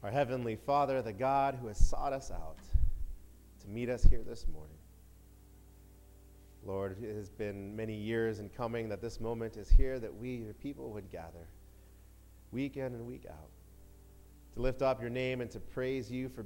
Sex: male